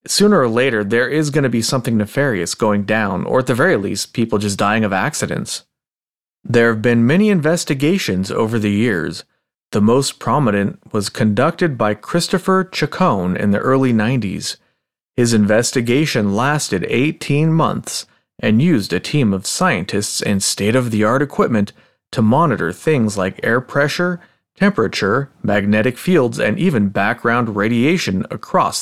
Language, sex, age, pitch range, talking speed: English, male, 30-49, 105-150 Hz, 145 wpm